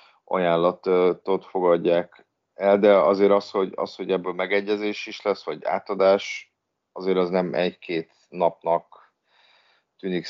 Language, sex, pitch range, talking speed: Hungarian, male, 85-105 Hz, 120 wpm